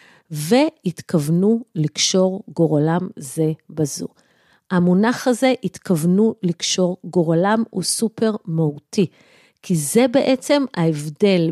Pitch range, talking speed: 175-290 Hz, 90 wpm